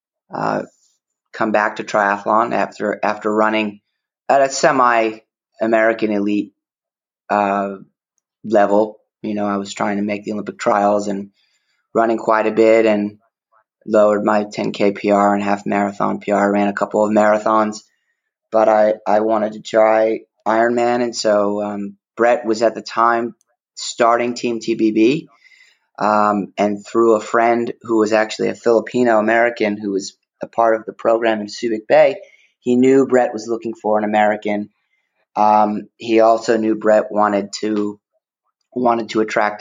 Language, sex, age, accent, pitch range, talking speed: English, male, 30-49, American, 105-110 Hz, 155 wpm